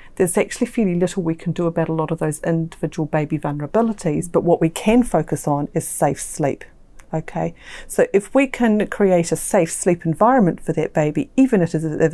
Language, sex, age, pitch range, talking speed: English, female, 40-59, 150-175 Hz, 195 wpm